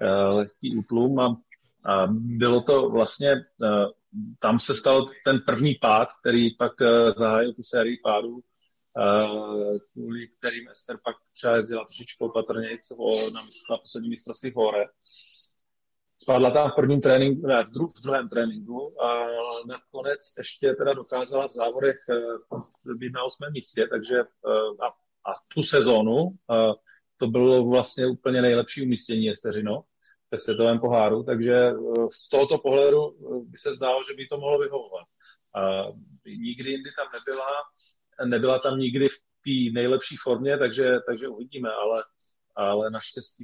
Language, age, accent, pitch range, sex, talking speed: Czech, 40-59, native, 115-135 Hz, male, 130 wpm